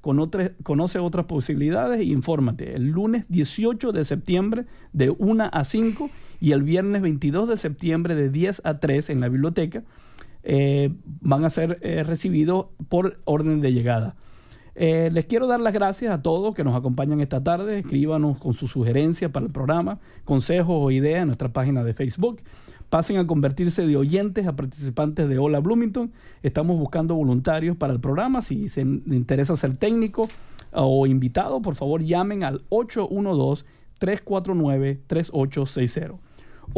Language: English